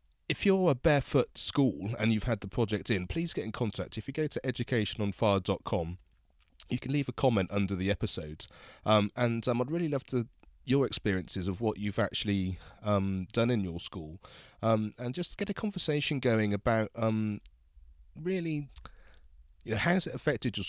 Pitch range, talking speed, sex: 95-115 Hz, 185 wpm, male